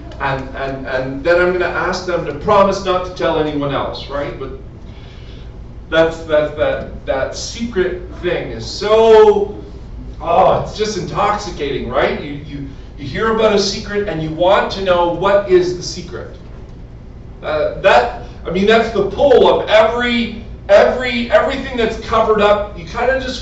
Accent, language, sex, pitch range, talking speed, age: American, English, male, 160-210 Hz, 165 wpm, 40-59